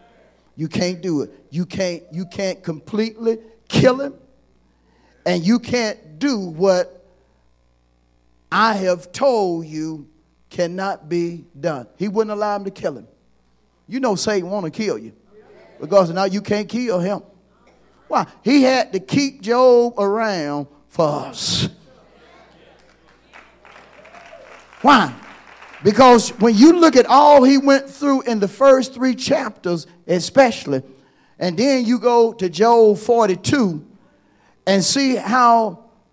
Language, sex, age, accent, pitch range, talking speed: English, male, 40-59, American, 155-230 Hz, 130 wpm